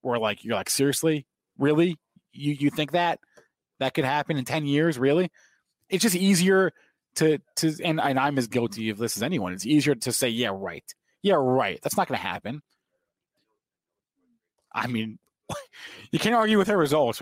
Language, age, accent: English, 20-39, American